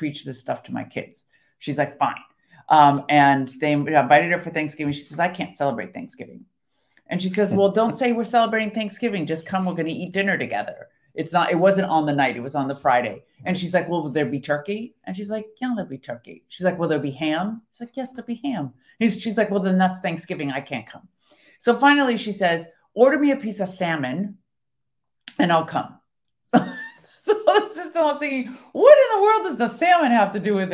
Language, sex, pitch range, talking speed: English, female, 170-245 Hz, 220 wpm